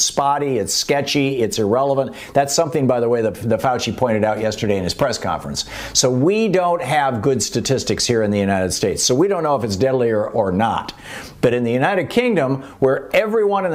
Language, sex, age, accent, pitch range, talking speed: English, male, 50-69, American, 115-150 Hz, 215 wpm